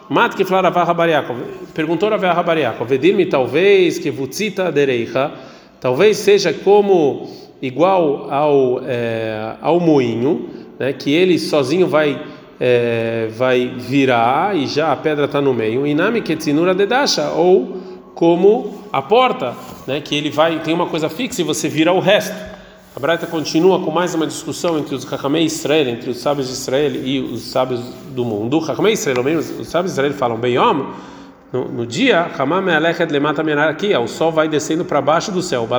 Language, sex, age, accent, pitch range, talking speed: Portuguese, male, 40-59, Brazilian, 135-185 Hz, 165 wpm